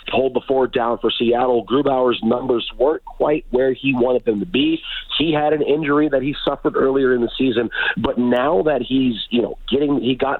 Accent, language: American, English